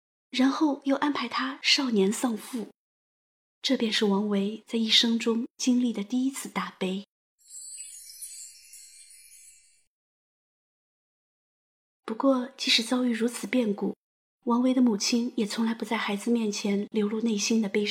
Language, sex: Chinese, female